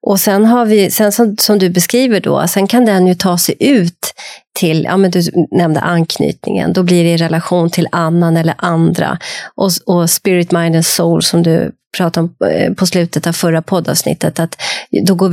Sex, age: female, 30-49